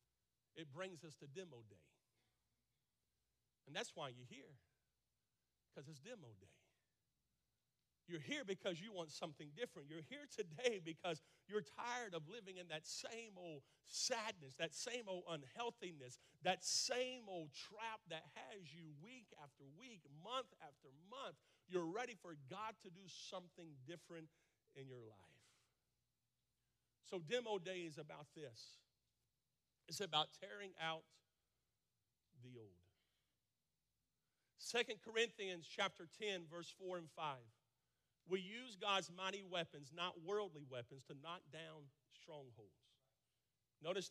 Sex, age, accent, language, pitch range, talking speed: male, 50-69, American, English, 145-195 Hz, 130 wpm